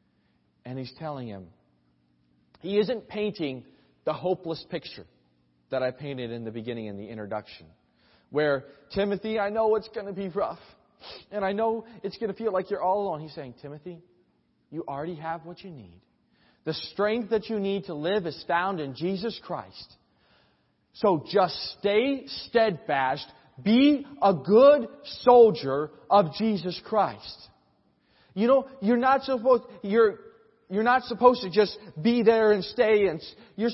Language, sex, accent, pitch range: English, male, American, 165-235 Hz